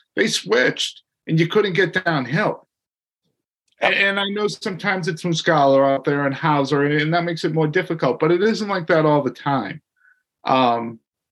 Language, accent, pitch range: English, American, 135-165 Hz